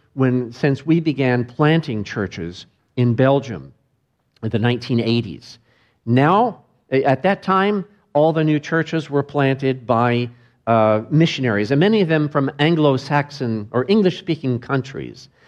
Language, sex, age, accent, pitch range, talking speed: English, male, 50-69, American, 115-150 Hz, 125 wpm